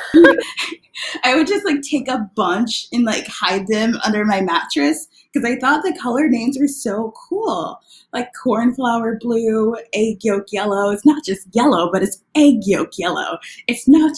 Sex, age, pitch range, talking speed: female, 20-39, 180-250 Hz, 170 wpm